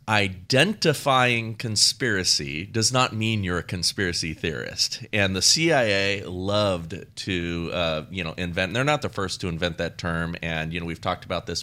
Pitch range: 90-115 Hz